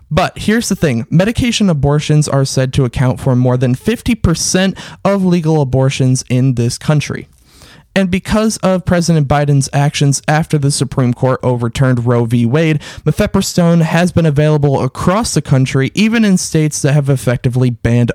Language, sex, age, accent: English, male, 20-39, American